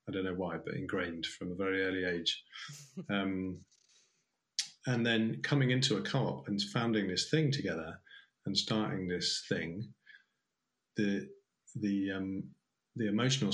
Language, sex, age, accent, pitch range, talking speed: English, male, 30-49, British, 95-125 Hz, 140 wpm